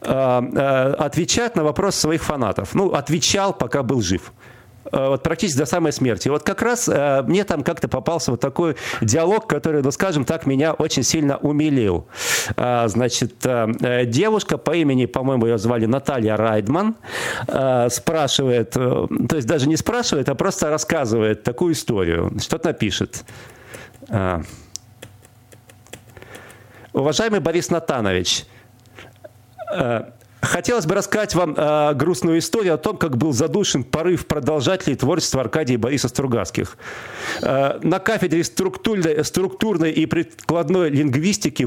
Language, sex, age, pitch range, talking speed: Russian, male, 40-59, 120-165 Hz, 115 wpm